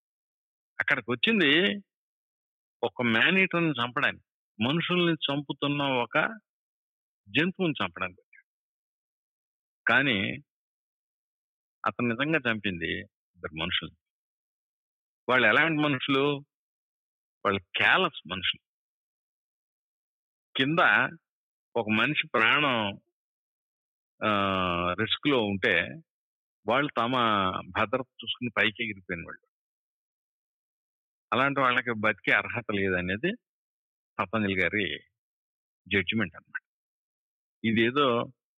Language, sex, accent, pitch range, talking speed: Telugu, male, native, 100-140 Hz, 70 wpm